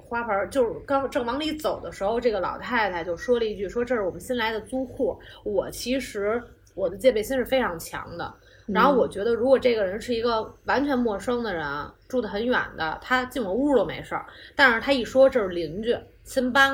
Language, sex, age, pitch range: Chinese, female, 20-39, 180-255 Hz